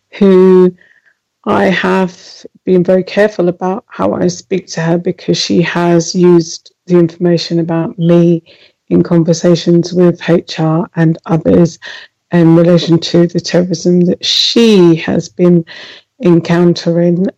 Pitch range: 170-180 Hz